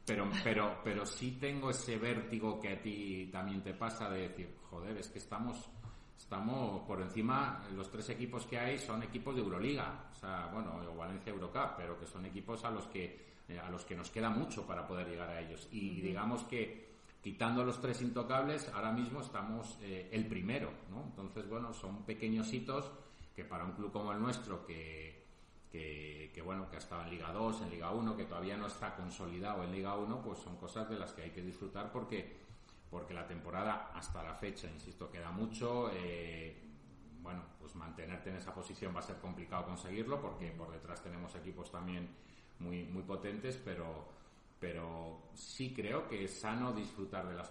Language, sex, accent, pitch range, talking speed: Spanish, male, Spanish, 85-115 Hz, 190 wpm